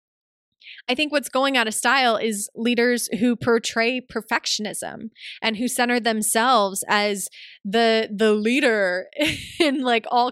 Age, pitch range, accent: 20-39, 220-255 Hz, American